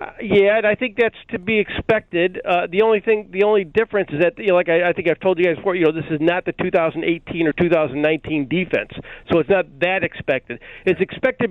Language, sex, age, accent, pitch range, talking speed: English, male, 40-59, American, 160-200 Hz, 240 wpm